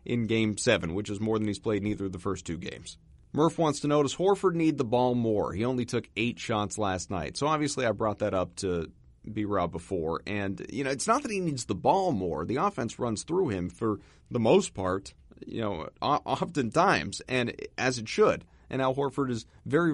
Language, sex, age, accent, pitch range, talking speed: English, male, 30-49, American, 110-140 Hz, 220 wpm